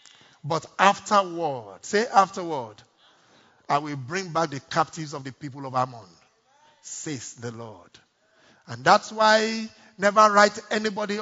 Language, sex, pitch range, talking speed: English, male, 145-210 Hz, 130 wpm